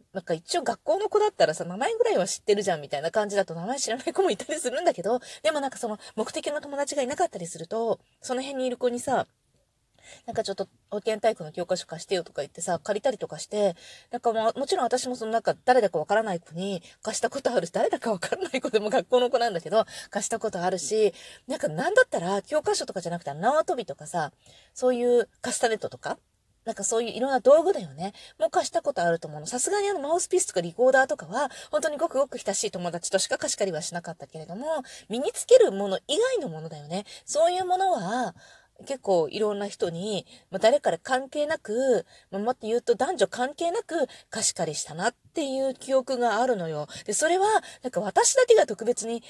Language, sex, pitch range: Japanese, female, 195-300 Hz